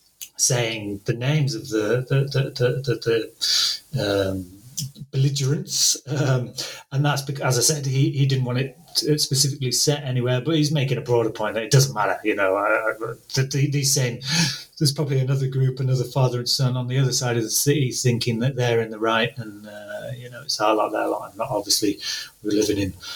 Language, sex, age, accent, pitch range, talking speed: English, male, 30-49, British, 120-145 Hz, 200 wpm